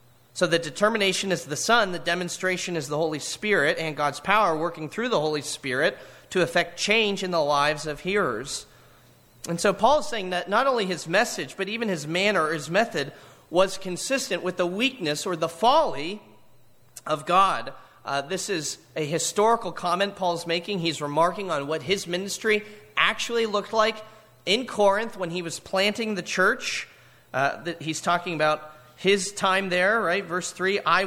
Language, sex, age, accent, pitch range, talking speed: English, male, 30-49, American, 165-205 Hz, 175 wpm